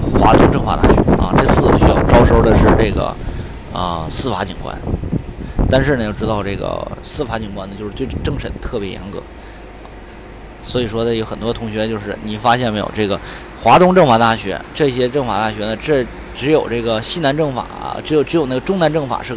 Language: Chinese